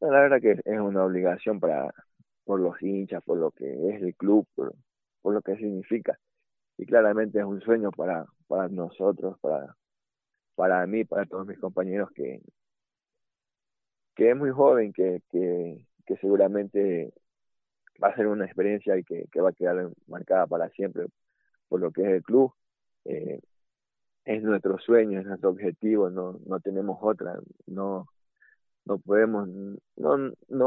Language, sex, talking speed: Spanish, male, 155 wpm